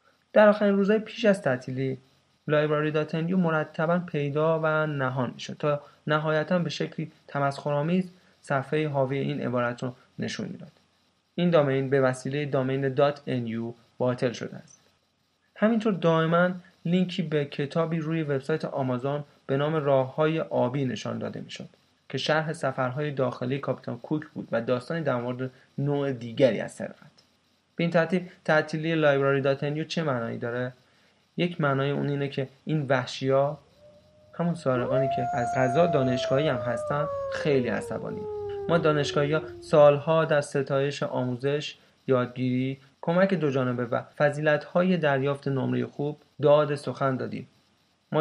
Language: Persian